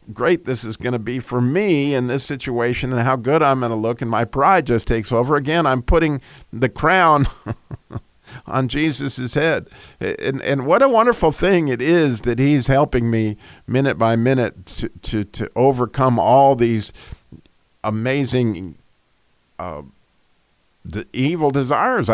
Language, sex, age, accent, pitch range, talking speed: English, male, 50-69, American, 115-145 Hz, 155 wpm